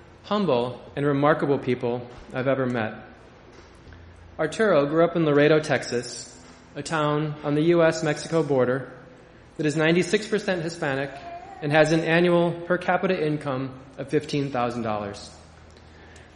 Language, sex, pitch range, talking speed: English, male, 120-165 Hz, 115 wpm